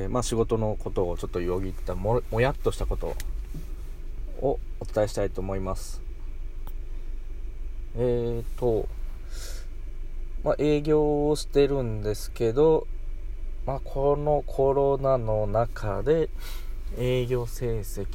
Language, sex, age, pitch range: Japanese, male, 20-39, 85-125 Hz